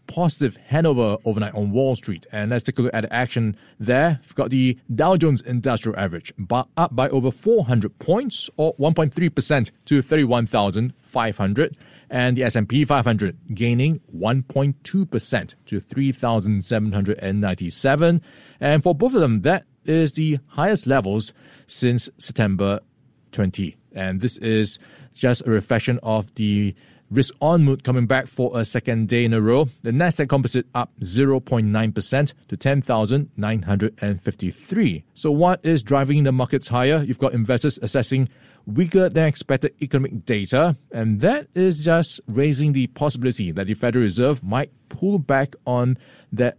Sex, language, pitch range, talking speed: male, English, 110-145 Hz, 140 wpm